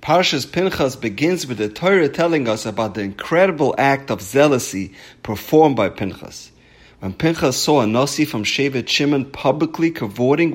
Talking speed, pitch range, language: 155 wpm, 110-165 Hz, English